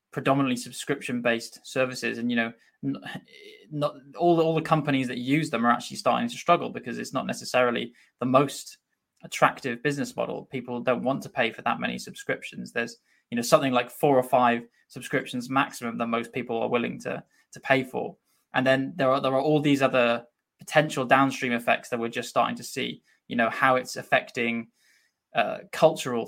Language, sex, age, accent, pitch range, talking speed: English, male, 10-29, British, 120-140 Hz, 185 wpm